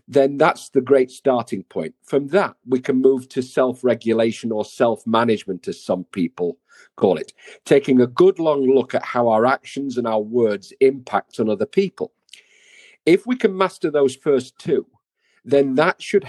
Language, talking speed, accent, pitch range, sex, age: English, 170 wpm, British, 120-190 Hz, male, 40-59